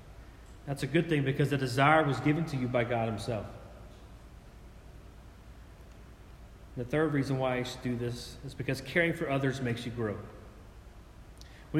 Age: 30-49